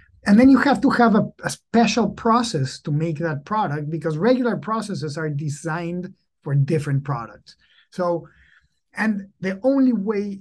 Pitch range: 145-185 Hz